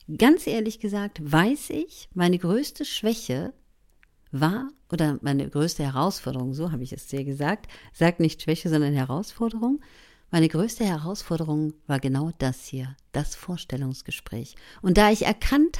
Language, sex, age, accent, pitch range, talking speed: German, female, 50-69, German, 135-205 Hz, 140 wpm